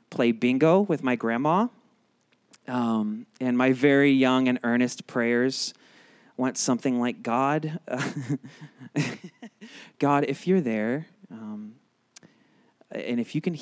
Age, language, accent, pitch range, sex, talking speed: 20-39, English, American, 125-175 Hz, male, 115 wpm